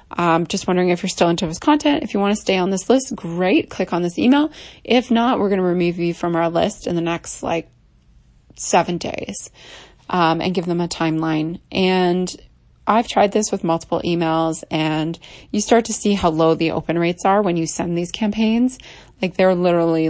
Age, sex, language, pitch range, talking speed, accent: 20-39, female, English, 165-200 Hz, 210 wpm, American